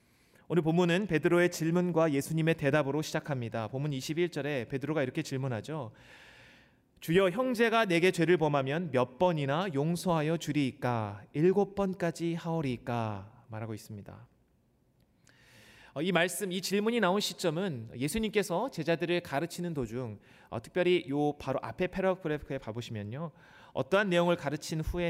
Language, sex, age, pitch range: Korean, male, 30-49, 125-175 Hz